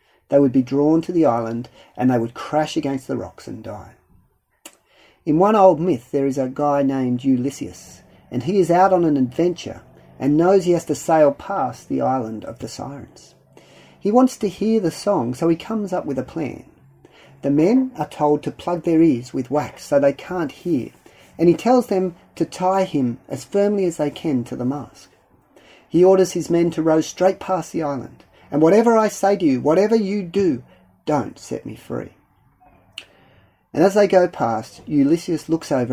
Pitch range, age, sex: 140-195 Hz, 40-59, male